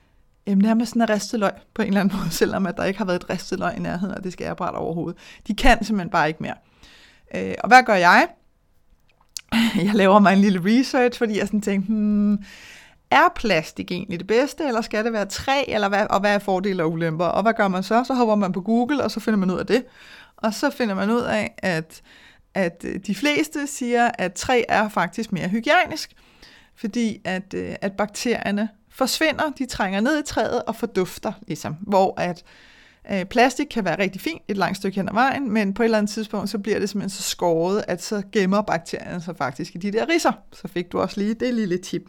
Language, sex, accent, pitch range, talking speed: Danish, female, native, 190-235 Hz, 215 wpm